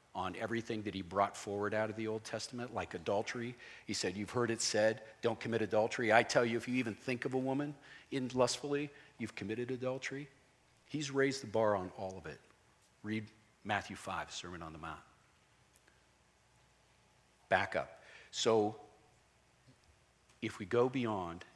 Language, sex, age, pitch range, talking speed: English, male, 50-69, 100-125 Hz, 165 wpm